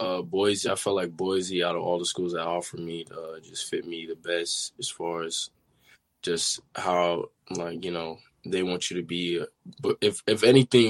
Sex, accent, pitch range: male, American, 90-100 Hz